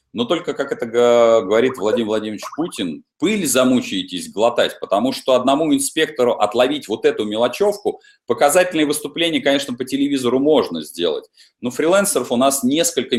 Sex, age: male, 30-49